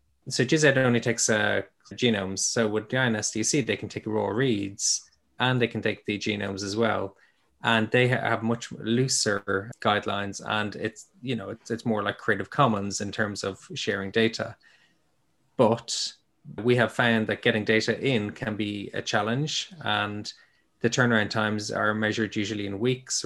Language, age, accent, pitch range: English, 20-39, Irish, 105-115 Hz